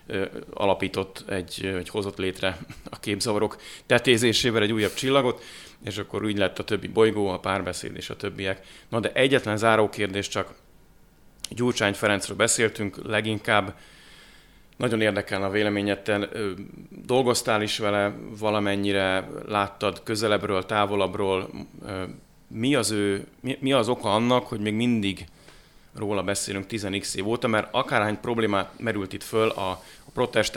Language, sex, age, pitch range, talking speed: Hungarian, male, 30-49, 95-110 Hz, 135 wpm